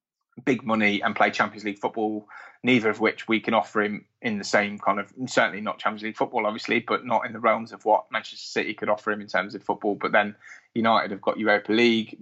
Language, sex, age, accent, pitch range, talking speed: English, male, 20-39, British, 105-130 Hz, 235 wpm